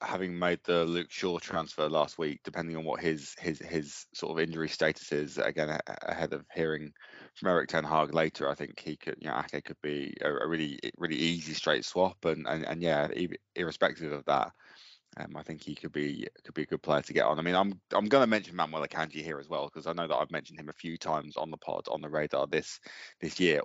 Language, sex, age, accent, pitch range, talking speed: English, male, 20-39, British, 75-85 Hz, 245 wpm